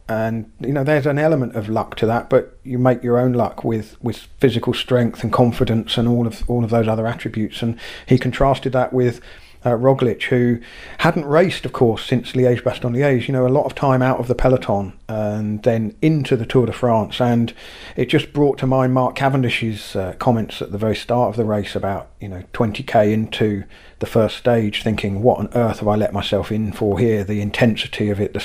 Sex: male